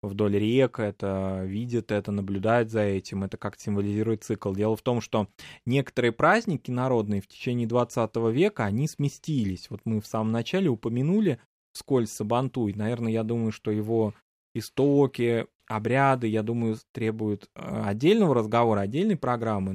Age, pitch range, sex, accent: 20-39, 110-135 Hz, male, native